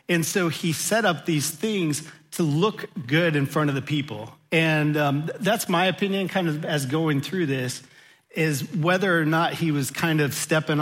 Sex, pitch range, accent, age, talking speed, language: male, 140-165 Hz, American, 40-59, 195 wpm, English